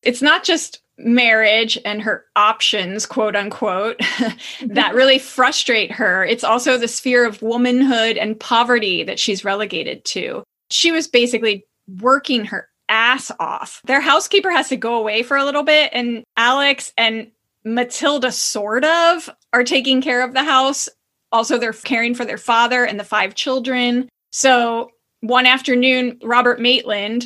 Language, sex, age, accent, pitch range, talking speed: English, female, 20-39, American, 220-255 Hz, 150 wpm